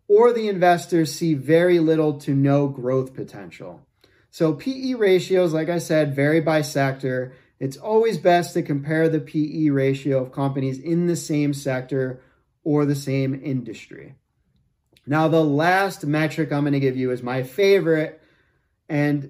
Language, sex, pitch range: English, male, 140-175 Hz